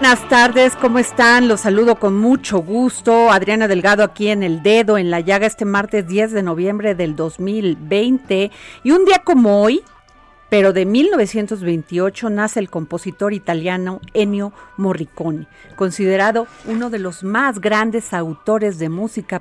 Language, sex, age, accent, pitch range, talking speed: Spanish, female, 40-59, Mexican, 180-220 Hz, 150 wpm